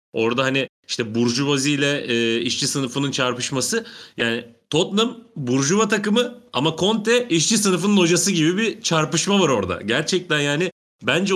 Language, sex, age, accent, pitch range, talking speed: Turkish, male, 30-49, native, 115-170 Hz, 135 wpm